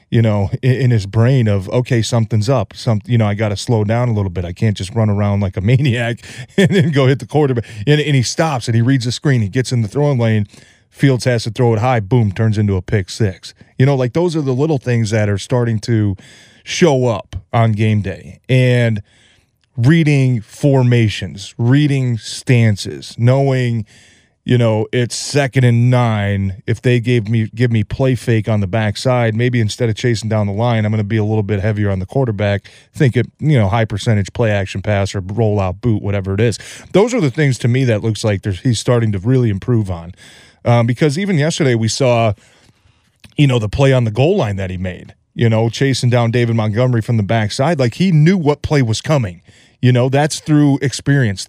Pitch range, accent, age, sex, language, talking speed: 105-130 Hz, American, 30-49, male, English, 215 wpm